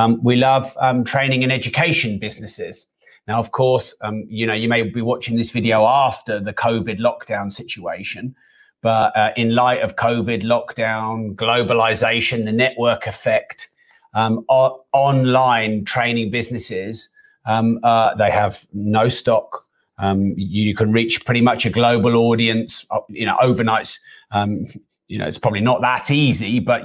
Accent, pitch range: British, 110-125 Hz